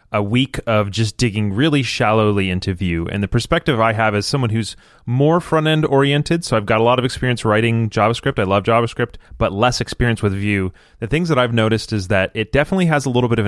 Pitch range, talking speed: 105-135 Hz, 225 wpm